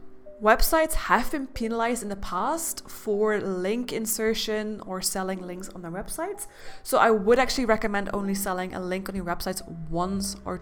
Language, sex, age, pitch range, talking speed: English, female, 20-39, 185-225 Hz, 170 wpm